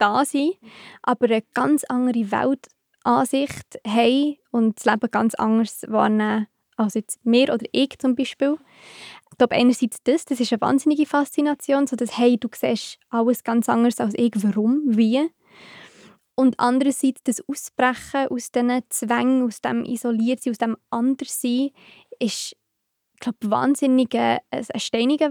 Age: 20-39